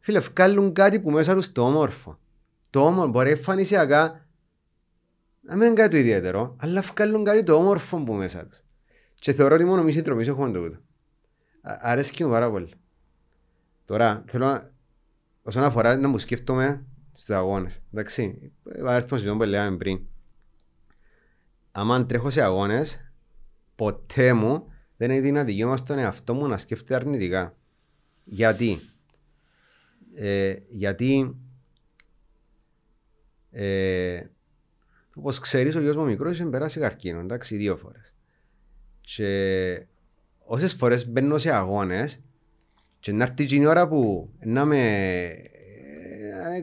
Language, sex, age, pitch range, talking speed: Greek, male, 30-49, 105-150 Hz, 80 wpm